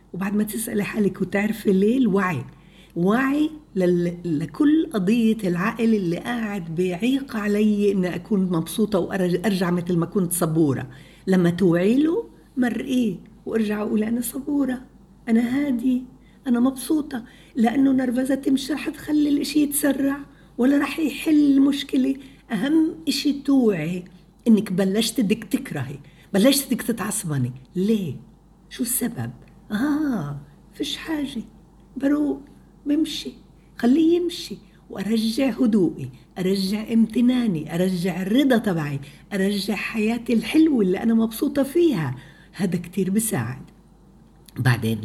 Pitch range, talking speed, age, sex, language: 180-265 Hz, 110 wpm, 50-69, female, Arabic